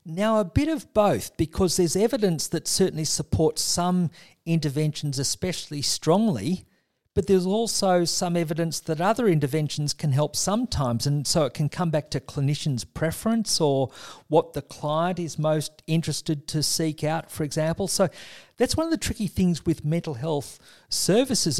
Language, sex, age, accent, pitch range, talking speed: English, male, 50-69, Australian, 140-175 Hz, 160 wpm